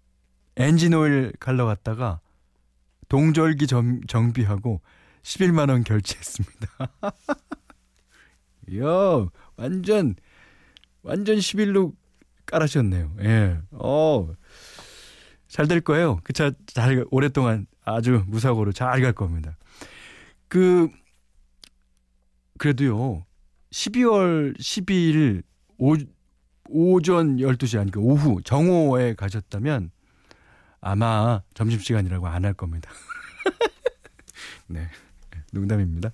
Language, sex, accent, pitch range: Korean, male, native, 95-160 Hz